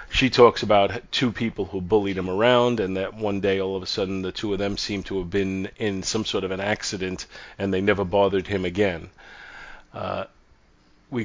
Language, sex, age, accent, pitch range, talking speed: English, male, 40-59, American, 95-110 Hz, 210 wpm